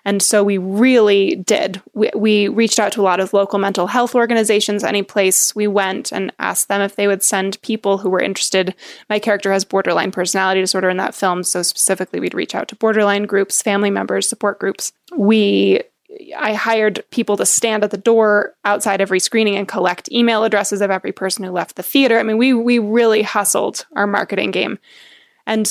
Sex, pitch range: female, 190-225 Hz